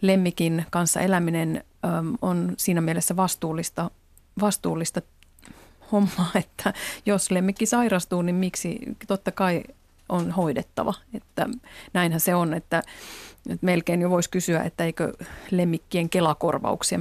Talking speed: 115 wpm